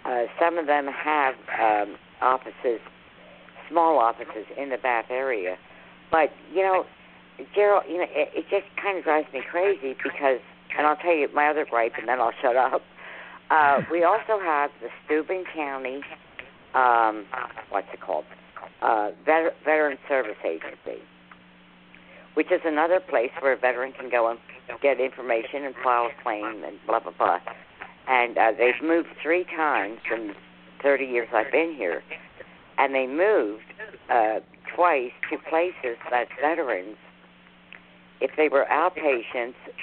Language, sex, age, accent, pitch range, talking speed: English, female, 50-69, American, 115-155 Hz, 150 wpm